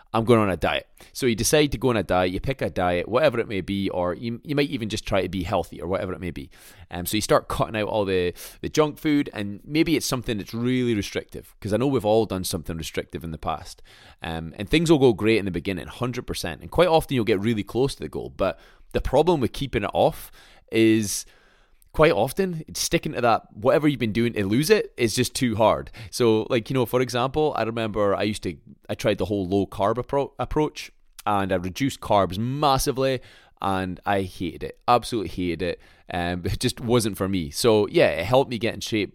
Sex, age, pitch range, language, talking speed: male, 20-39, 95-120 Hz, English, 235 wpm